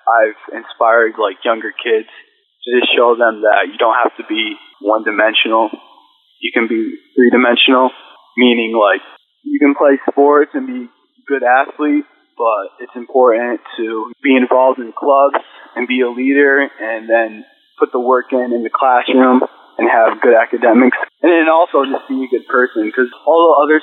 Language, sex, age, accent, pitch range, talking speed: English, male, 20-39, American, 125-160 Hz, 170 wpm